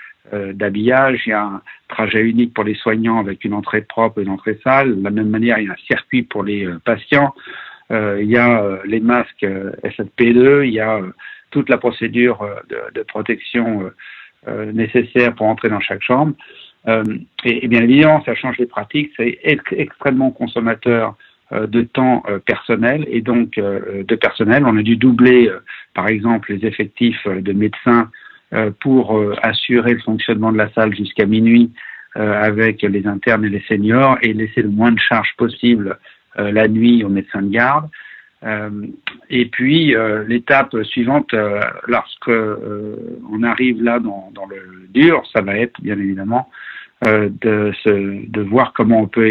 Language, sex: French, male